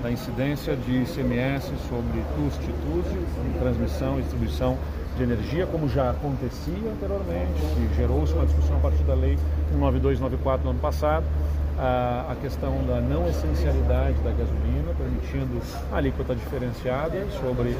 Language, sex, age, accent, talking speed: Portuguese, male, 40-59, Brazilian, 135 wpm